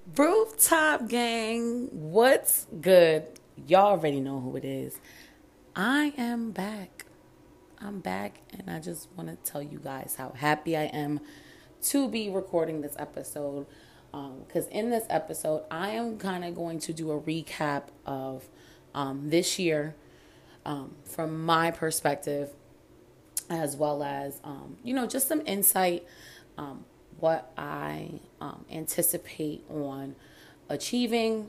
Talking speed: 135 wpm